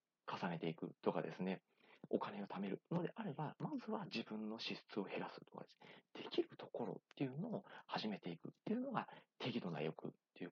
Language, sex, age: Japanese, male, 40-59